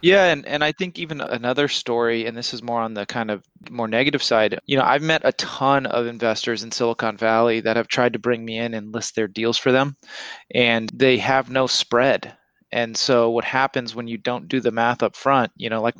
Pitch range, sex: 115-135 Hz, male